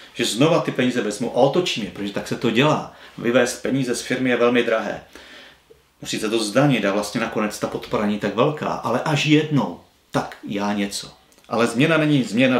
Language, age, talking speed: Czech, 40-59, 195 wpm